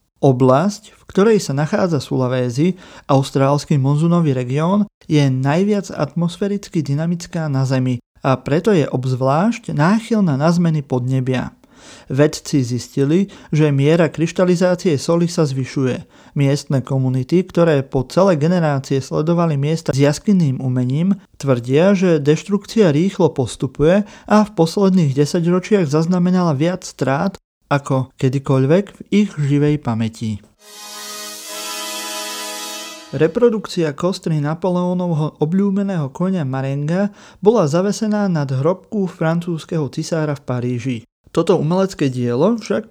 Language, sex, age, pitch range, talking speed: Slovak, male, 40-59, 135-185 Hz, 110 wpm